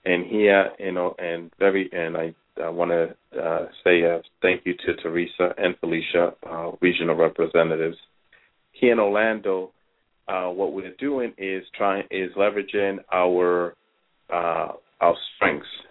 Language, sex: English, male